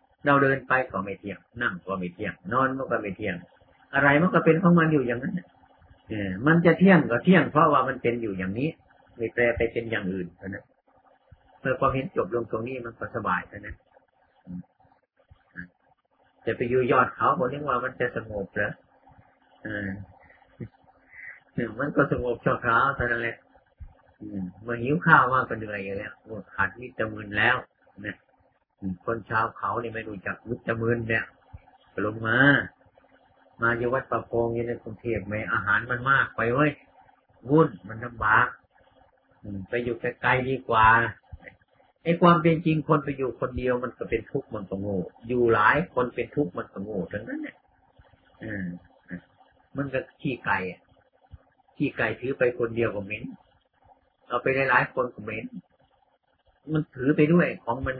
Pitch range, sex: 105-135 Hz, male